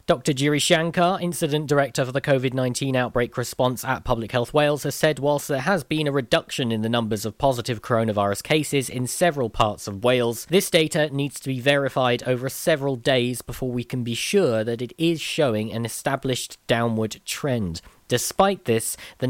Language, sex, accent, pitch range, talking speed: English, male, British, 115-145 Hz, 185 wpm